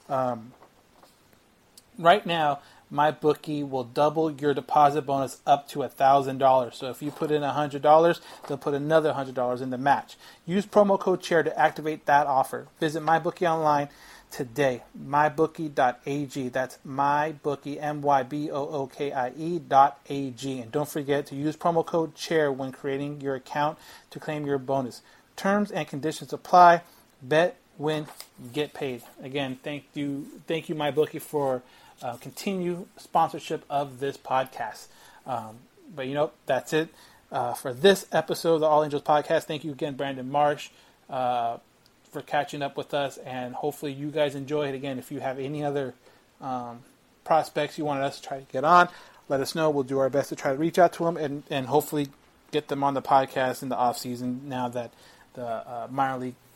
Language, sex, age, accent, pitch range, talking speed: English, male, 30-49, American, 135-155 Hz, 170 wpm